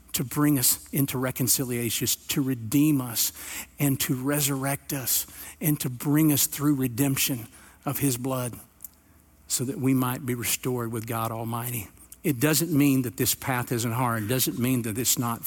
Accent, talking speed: American, 170 wpm